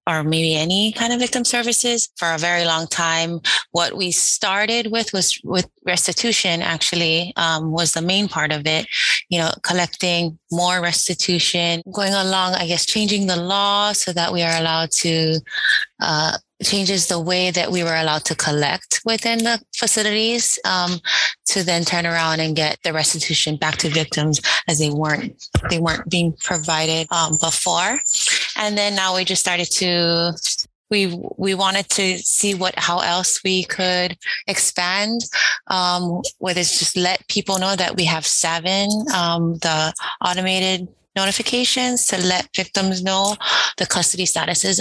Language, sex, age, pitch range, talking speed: English, female, 20-39, 165-200 Hz, 160 wpm